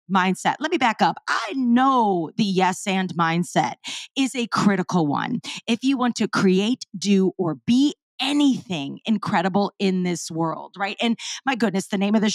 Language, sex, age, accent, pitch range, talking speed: English, female, 30-49, American, 180-240 Hz, 175 wpm